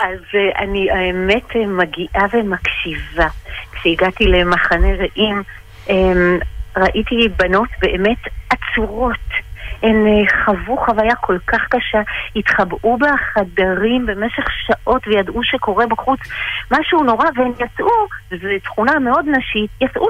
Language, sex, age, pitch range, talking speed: Hebrew, female, 40-59, 200-260 Hz, 115 wpm